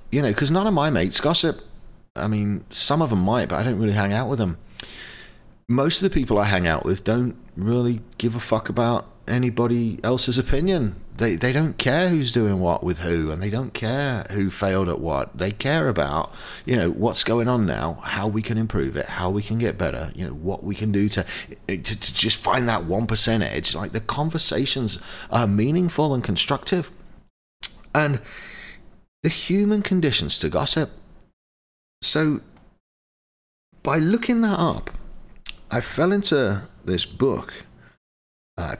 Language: English